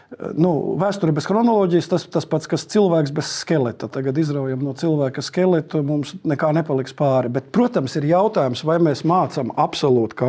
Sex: male